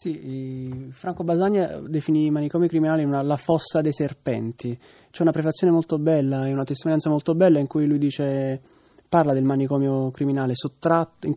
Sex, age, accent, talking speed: male, 20-39, native, 165 wpm